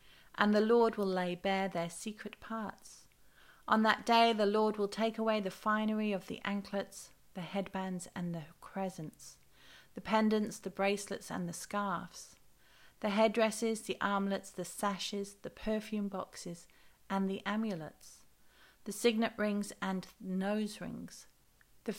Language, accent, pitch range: English, British, 185-215 Hz